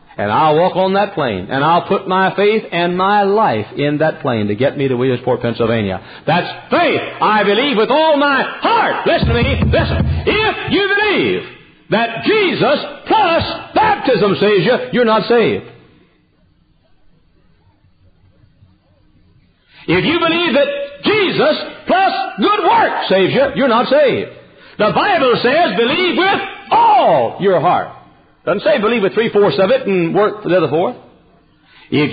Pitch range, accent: 185-305 Hz, American